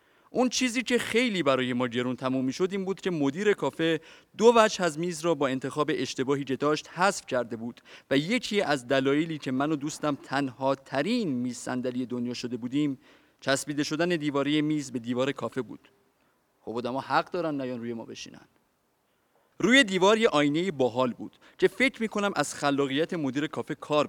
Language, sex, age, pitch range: Persian, male, 30-49, 135-185 Hz